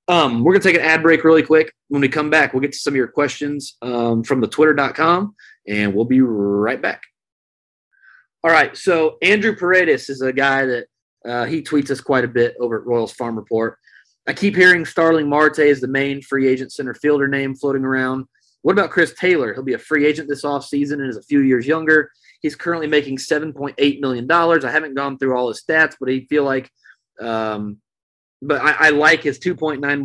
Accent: American